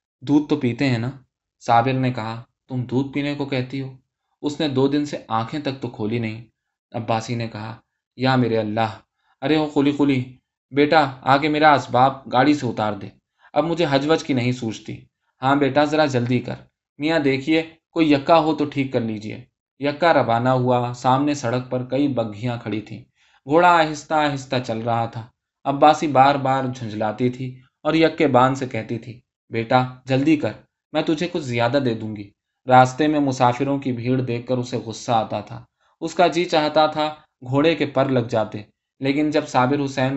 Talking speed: 185 wpm